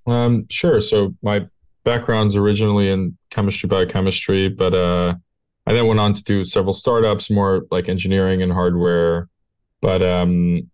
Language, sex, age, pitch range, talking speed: English, male, 20-39, 90-105 Hz, 145 wpm